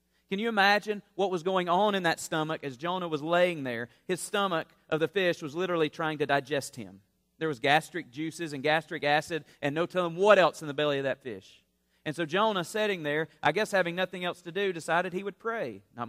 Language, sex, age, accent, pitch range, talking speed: English, male, 40-59, American, 120-185 Hz, 230 wpm